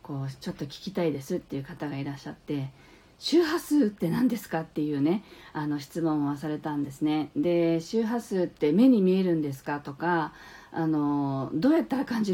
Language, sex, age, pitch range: Japanese, female, 40-59, 165-270 Hz